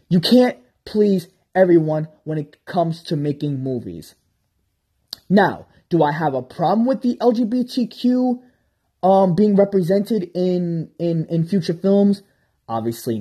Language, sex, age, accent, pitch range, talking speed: English, male, 20-39, American, 145-185 Hz, 125 wpm